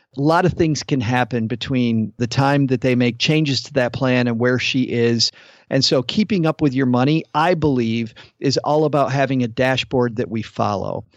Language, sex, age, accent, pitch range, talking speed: English, male, 40-59, American, 125-165 Hz, 205 wpm